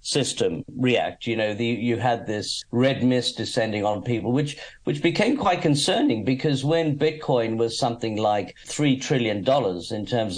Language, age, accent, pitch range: English, 50-69, British, 110-135 Hz